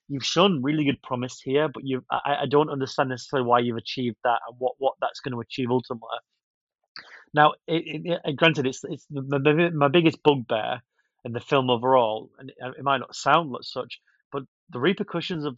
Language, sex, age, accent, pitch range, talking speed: English, male, 30-49, British, 120-145 Hz, 200 wpm